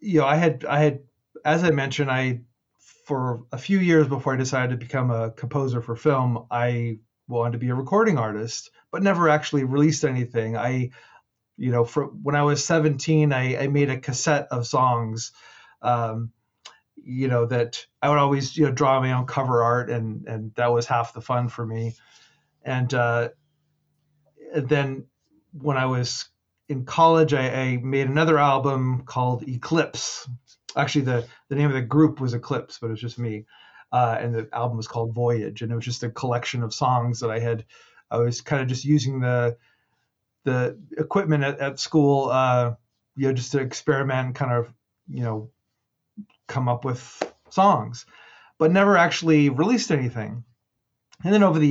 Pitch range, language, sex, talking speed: 120-145 Hz, English, male, 180 wpm